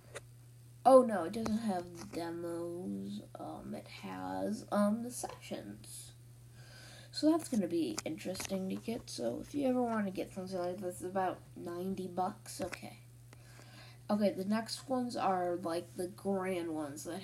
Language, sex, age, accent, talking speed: English, female, 10-29, American, 160 wpm